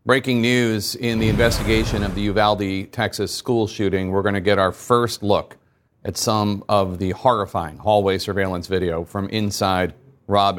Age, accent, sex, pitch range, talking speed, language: 40-59, American, male, 95-115 Hz, 165 wpm, English